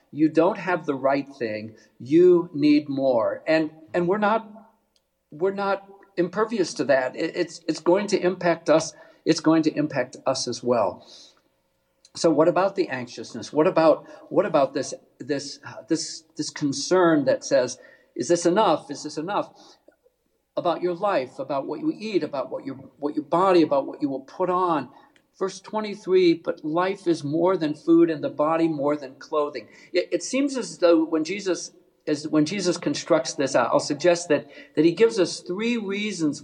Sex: male